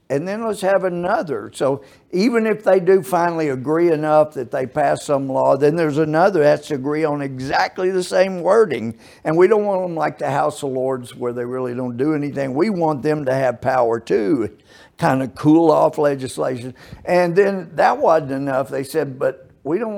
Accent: American